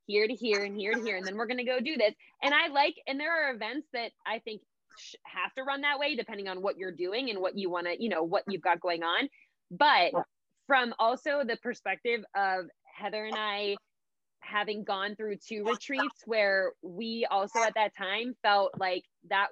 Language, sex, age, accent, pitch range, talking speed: English, female, 20-39, American, 195-240 Hz, 215 wpm